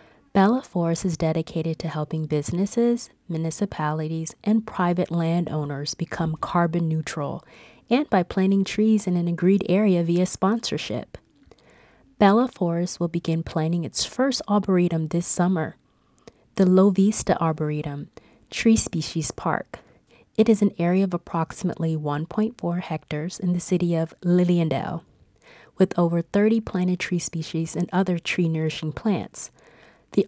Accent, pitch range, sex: American, 160-195 Hz, female